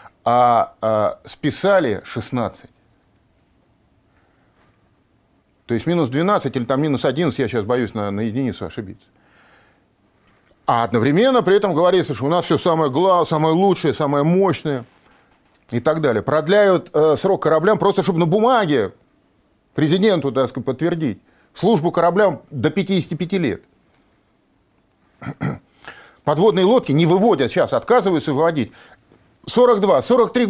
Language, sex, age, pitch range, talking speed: Russian, male, 40-59, 120-185 Hz, 120 wpm